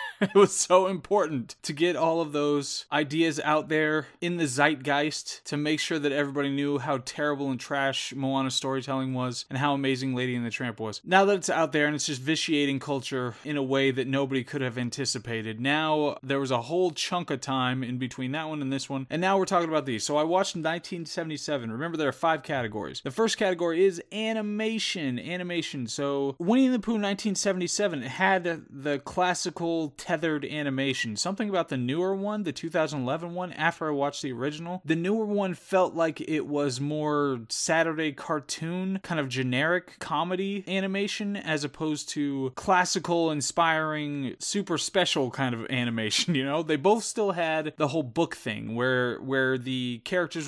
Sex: male